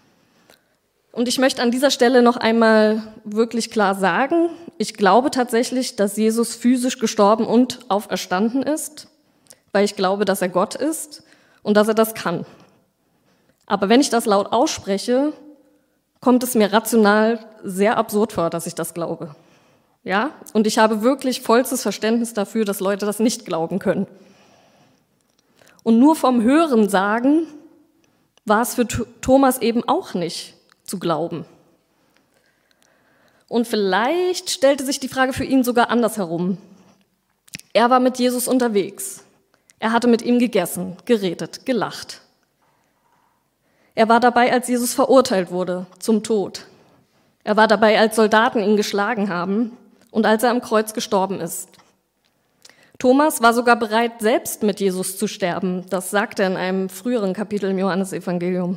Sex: female